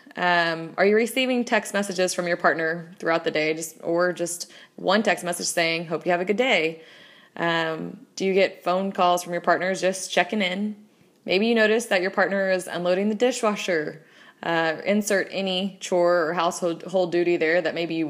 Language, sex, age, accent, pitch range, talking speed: English, female, 20-39, American, 175-210 Hz, 195 wpm